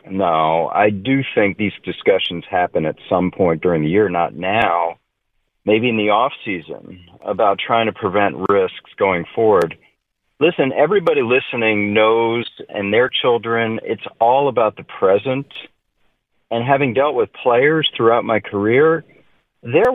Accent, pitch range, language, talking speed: American, 115-160 Hz, English, 140 wpm